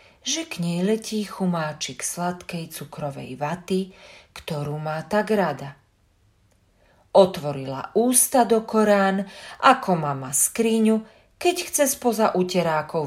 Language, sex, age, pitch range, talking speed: Slovak, female, 40-59, 145-210 Hz, 105 wpm